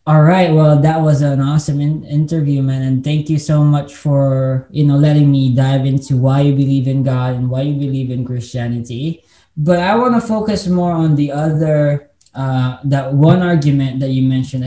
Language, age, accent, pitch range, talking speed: English, 20-39, Filipino, 130-150 Hz, 200 wpm